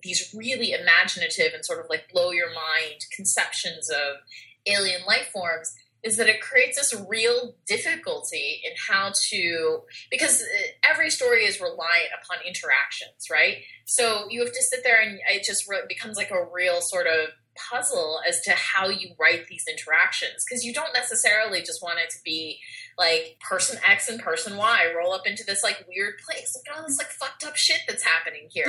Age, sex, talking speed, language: 20-39, female, 185 wpm, English